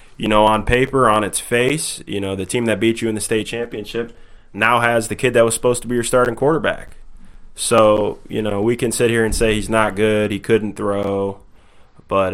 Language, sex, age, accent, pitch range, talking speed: English, male, 20-39, American, 100-115 Hz, 225 wpm